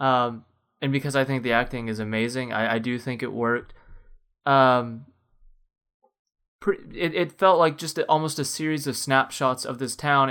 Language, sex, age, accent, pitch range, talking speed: English, male, 20-39, American, 115-140 Hz, 175 wpm